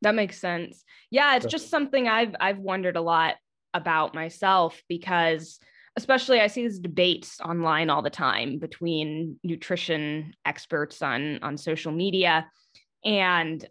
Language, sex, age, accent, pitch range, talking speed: English, female, 20-39, American, 170-210 Hz, 140 wpm